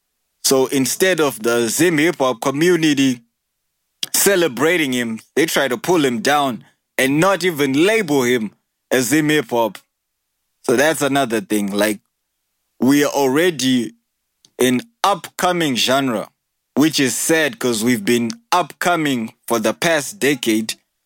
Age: 20-39